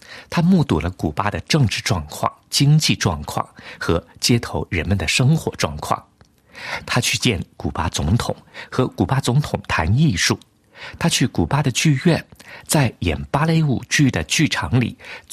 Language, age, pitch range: Chinese, 50-69, 95-140 Hz